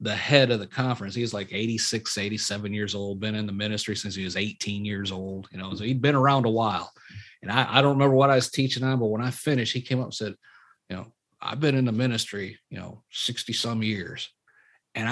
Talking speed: 240 wpm